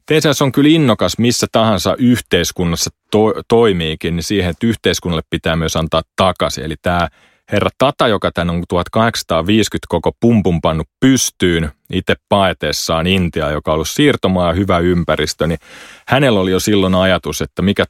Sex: male